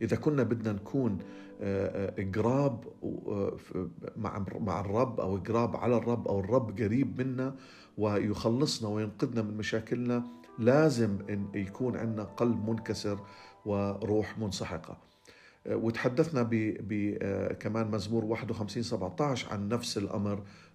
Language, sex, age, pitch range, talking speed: Arabic, male, 50-69, 105-125 Hz, 105 wpm